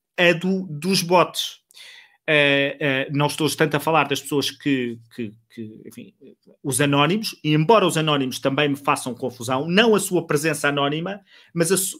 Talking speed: 135 wpm